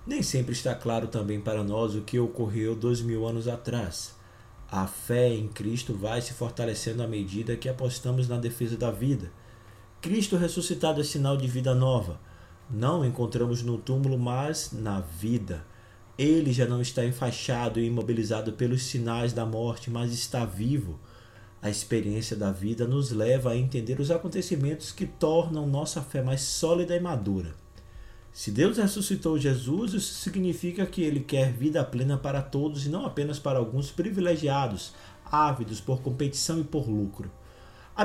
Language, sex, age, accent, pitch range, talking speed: Portuguese, male, 20-39, Brazilian, 110-140 Hz, 160 wpm